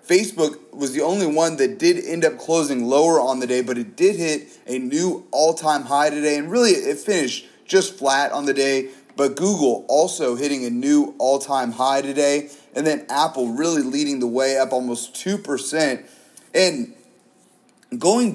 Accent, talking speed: American, 175 wpm